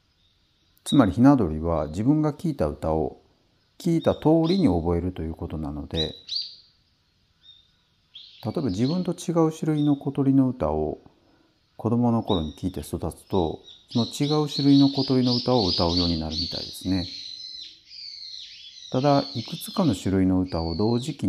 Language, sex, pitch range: Japanese, male, 85-135 Hz